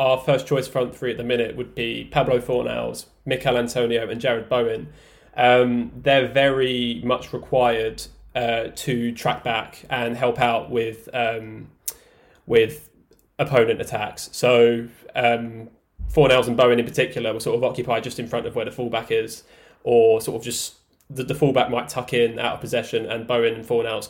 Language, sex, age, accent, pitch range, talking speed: English, male, 10-29, British, 115-130 Hz, 170 wpm